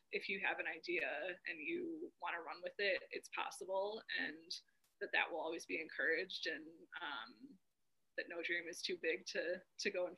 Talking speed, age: 195 wpm, 20-39